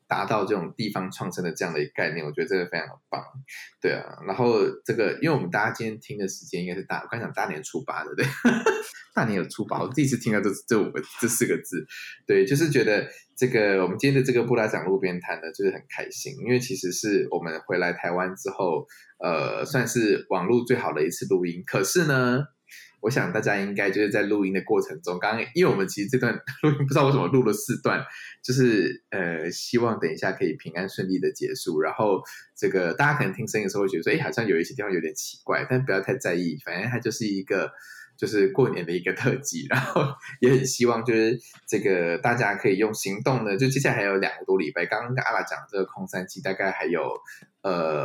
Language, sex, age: Chinese, male, 20-39